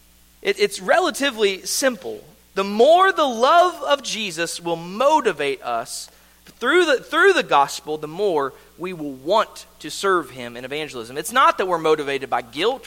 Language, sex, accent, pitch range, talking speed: English, male, American, 155-260 Hz, 165 wpm